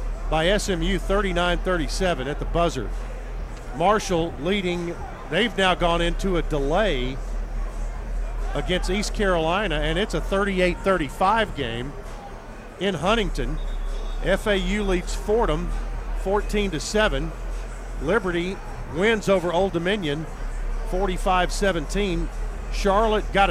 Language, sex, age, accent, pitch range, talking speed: English, male, 40-59, American, 160-195 Hz, 90 wpm